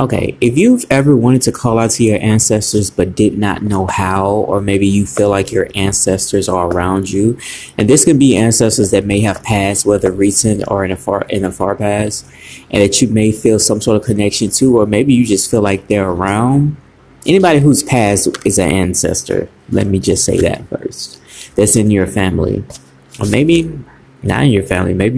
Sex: male